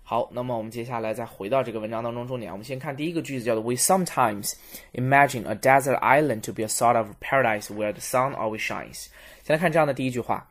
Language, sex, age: Chinese, male, 20-39